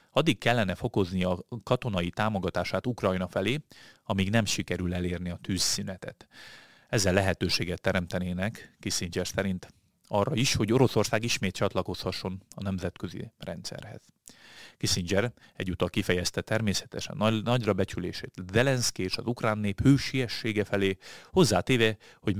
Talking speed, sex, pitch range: 115 wpm, male, 90-110 Hz